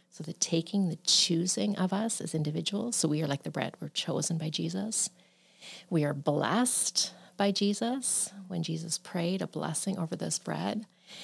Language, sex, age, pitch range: English, female, 40-59, 155-185 Hz